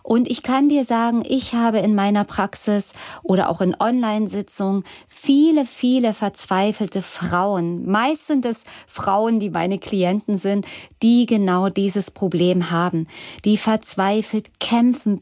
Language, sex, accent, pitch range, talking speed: German, female, German, 185-250 Hz, 135 wpm